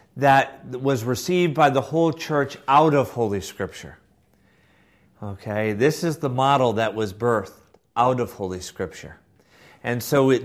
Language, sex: English, male